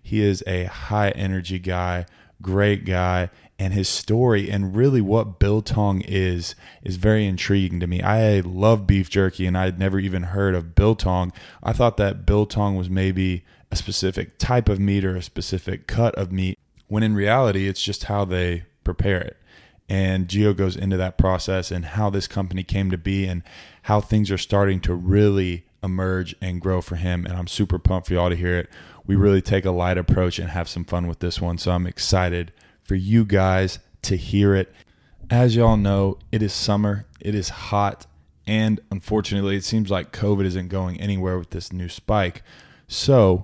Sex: male